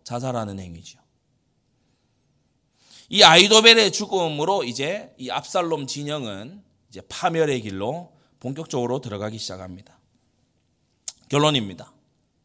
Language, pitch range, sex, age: Korean, 125-205 Hz, male, 30-49